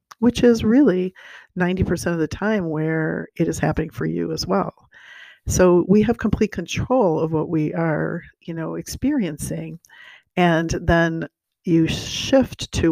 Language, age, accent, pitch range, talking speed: English, 50-69, American, 160-180 Hz, 150 wpm